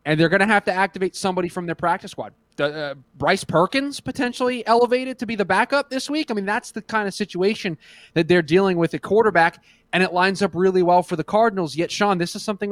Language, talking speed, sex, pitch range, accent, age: English, 235 wpm, male, 150-195 Hz, American, 20-39